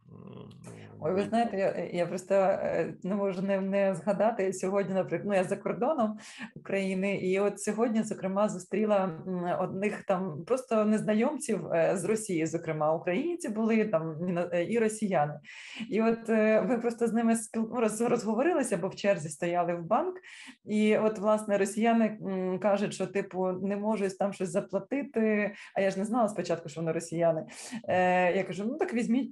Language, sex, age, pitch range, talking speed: Ukrainian, female, 20-39, 185-225 Hz, 150 wpm